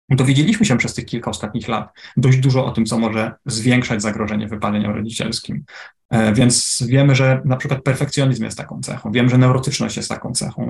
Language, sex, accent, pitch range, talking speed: Polish, male, native, 115-135 Hz, 180 wpm